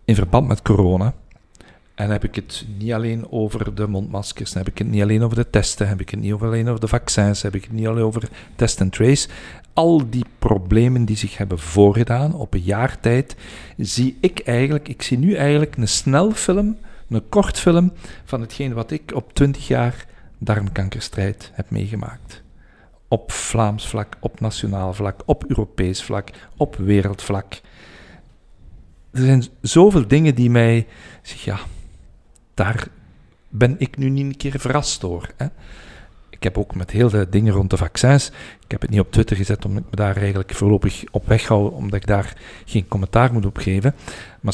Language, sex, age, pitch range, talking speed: Dutch, male, 50-69, 100-120 Hz, 180 wpm